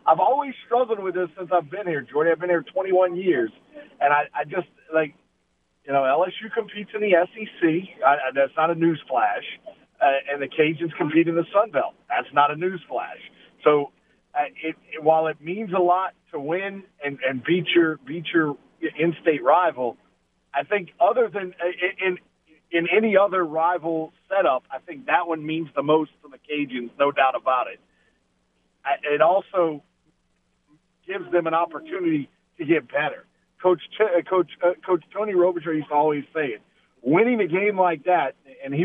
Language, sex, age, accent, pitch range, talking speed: English, male, 50-69, American, 150-185 Hz, 180 wpm